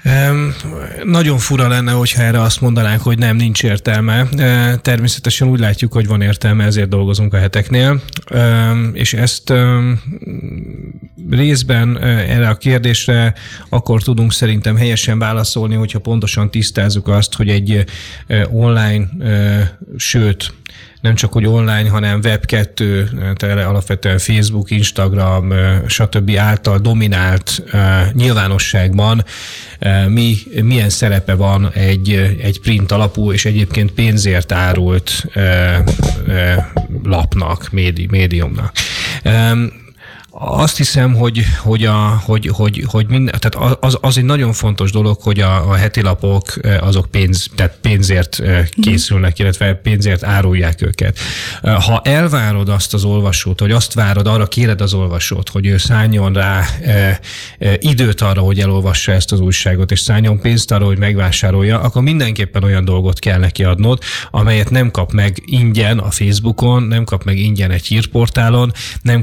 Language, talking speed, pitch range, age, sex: Hungarian, 125 wpm, 95-115 Hz, 30-49, male